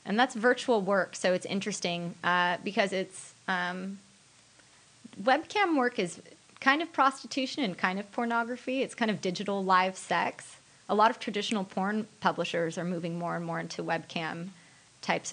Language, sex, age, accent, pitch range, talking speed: English, female, 20-39, American, 170-210 Hz, 160 wpm